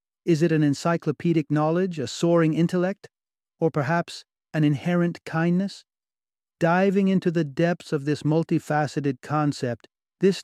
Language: English